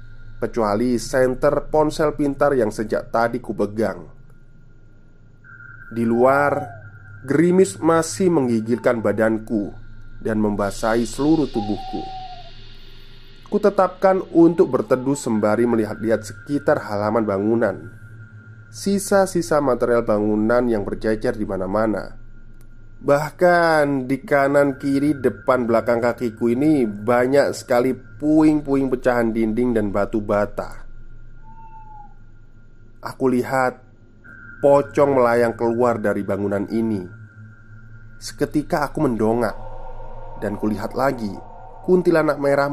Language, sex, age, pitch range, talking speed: Indonesian, male, 30-49, 110-140 Hz, 95 wpm